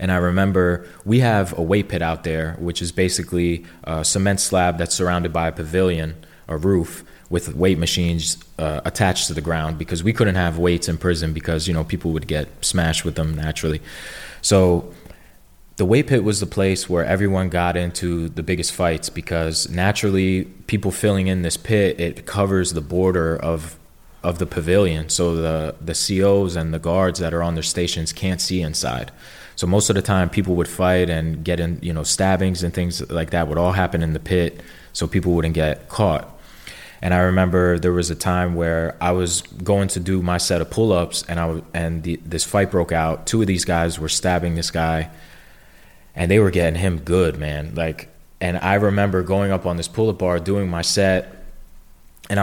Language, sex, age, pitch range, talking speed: English, male, 20-39, 80-95 Hz, 200 wpm